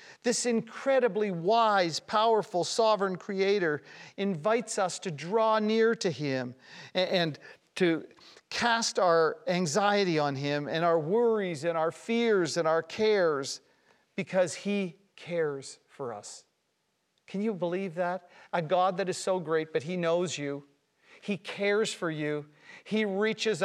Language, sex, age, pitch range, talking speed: English, male, 50-69, 160-210 Hz, 140 wpm